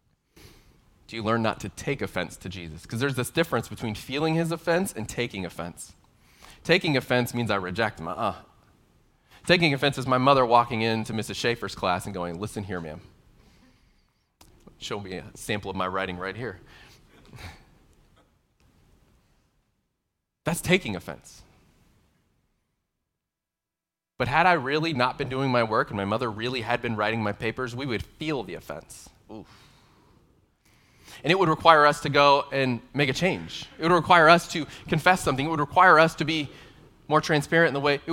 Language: English